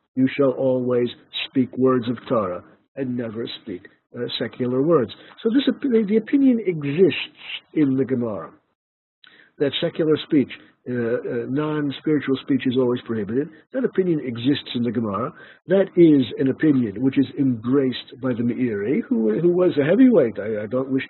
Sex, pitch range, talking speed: male, 120-150 Hz, 160 wpm